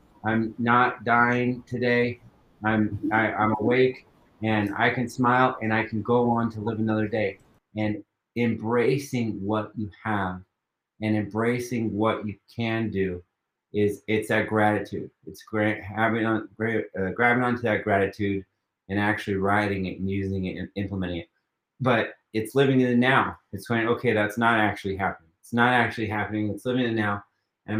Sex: male